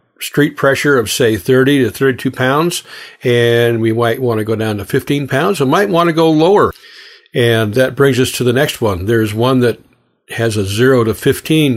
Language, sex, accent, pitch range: English, male, American, 115-140 Hz